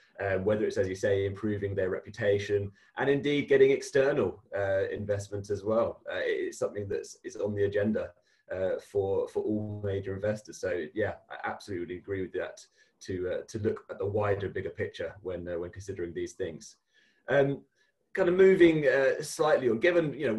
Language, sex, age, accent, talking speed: English, male, 20-39, British, 185 wpm